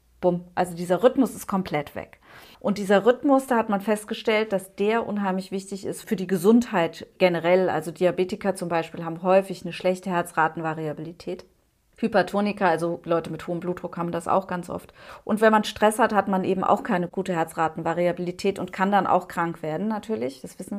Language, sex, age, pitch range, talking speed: German, female, 30-49, 175-210 Hz, 180 wpm